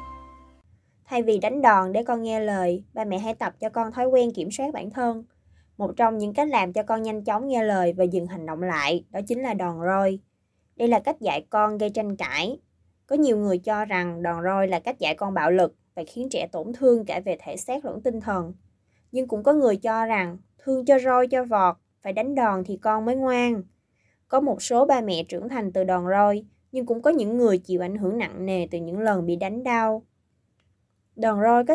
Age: 20-39